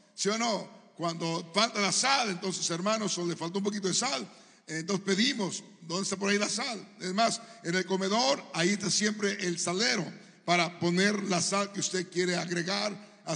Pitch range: 185-225 Hz